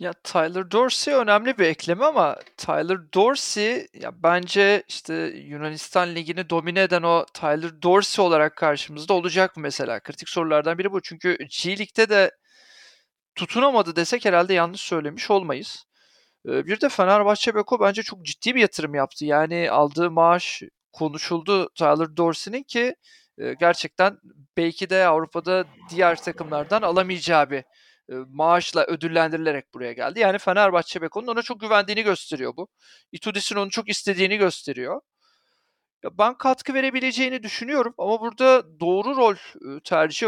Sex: male